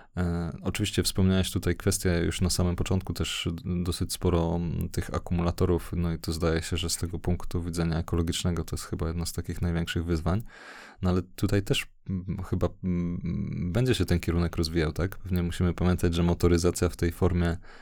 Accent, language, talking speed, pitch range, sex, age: native, Polish, 170 wpm, 85-90 Hz, male, 20-39